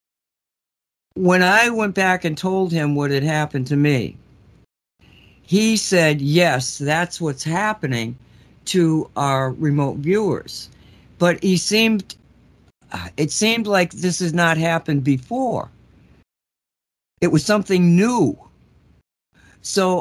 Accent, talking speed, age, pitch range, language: American, 115 wpm, 60-79, 140-175 Hz, English